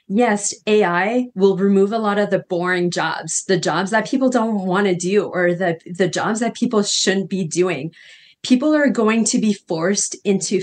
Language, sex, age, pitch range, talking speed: English, female, 30-49, 170-200 Hz, 190 wpm